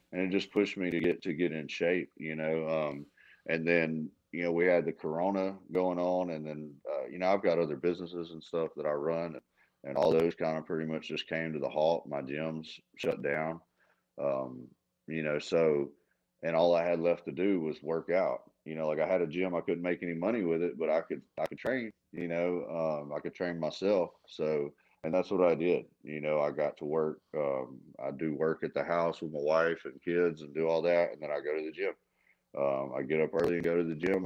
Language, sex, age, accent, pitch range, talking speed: English, male, 30-49, American, 75-85 Hz, 245 wpm